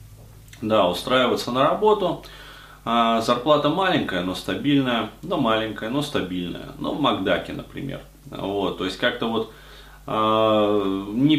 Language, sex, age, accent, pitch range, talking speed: Russian, male, 20-39, native, 95-130 Hz, 115 wpm